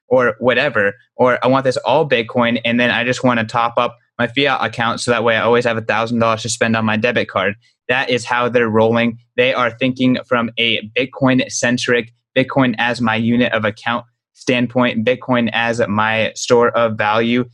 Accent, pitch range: American, 115-125 Hz